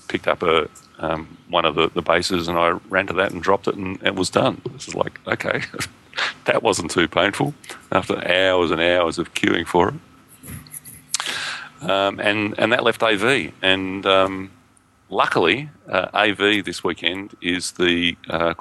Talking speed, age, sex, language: 170 wpm, 40-59, male, English